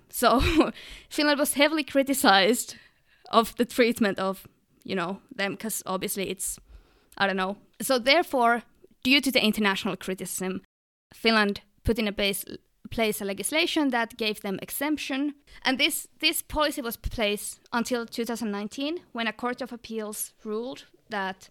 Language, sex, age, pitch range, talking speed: English, female, 20-39, 195-245 Hz, 140 wpm